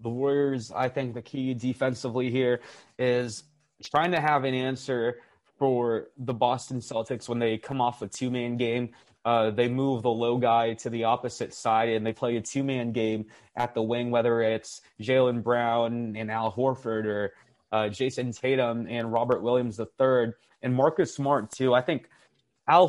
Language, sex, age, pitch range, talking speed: English, male, 20-39, 115-130 Hz, 175 wpm